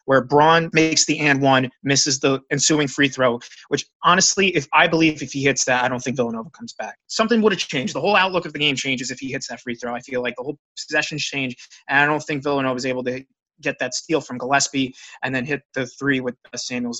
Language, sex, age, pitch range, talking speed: English, male, 20-39, 130-160 Hz, 245 wpm